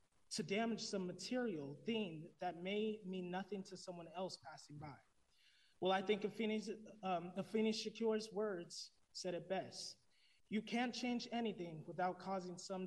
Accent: American